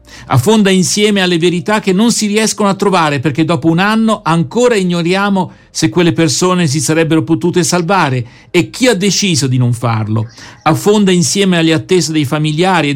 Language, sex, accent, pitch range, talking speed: Italian, male, native, 150-190 Hz, 170 wpm